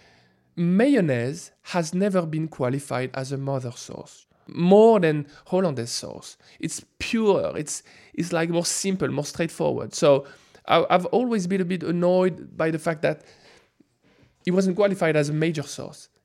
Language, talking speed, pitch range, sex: English, 150 wpm, 140-190 Hz, male